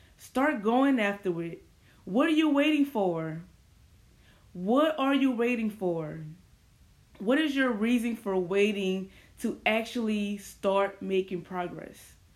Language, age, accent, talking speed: English, 20-39, American, 120 wpm